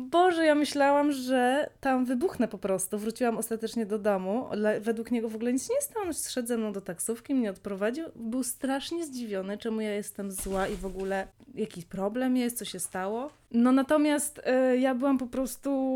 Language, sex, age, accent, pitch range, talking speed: Polish, female, 20-39, native, 210-260 Hz, 180 wpm